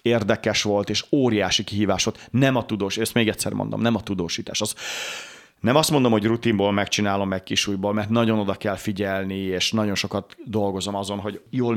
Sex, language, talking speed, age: male, Hungarian, 190 wpm, 30-49